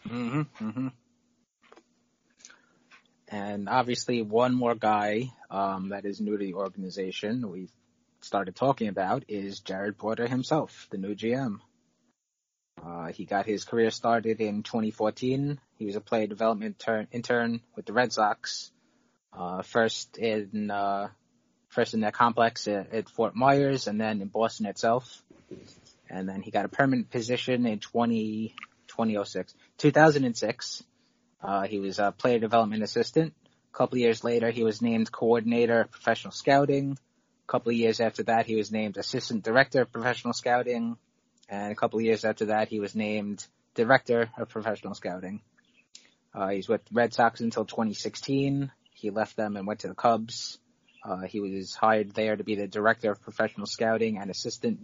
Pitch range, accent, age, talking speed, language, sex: 105-120 Hz, American, 20-39, 165 wpm, English, male